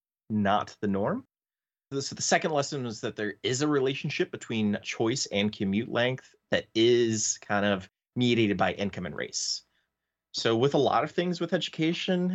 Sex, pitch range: male, 100-130 Hz